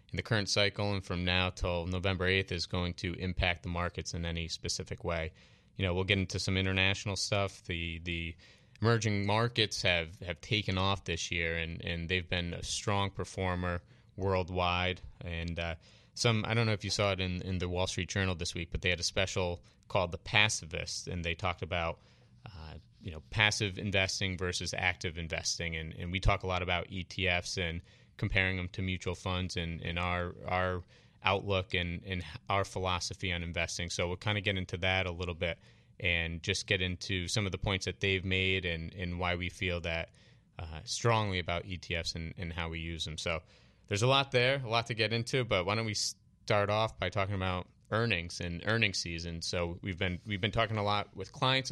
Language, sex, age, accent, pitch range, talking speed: English, male, 30-49, American, 90-105 Hz, 210 wpm